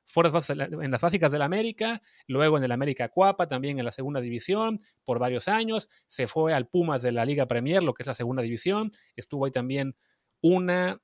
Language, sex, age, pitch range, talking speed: Spanish, male, 30-49, 140-195 Hz, 200 wpm